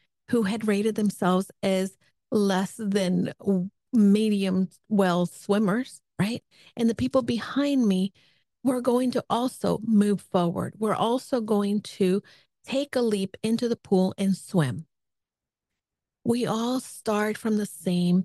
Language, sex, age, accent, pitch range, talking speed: English, female, 40-59, American, 190-230 Hz, 130 wpm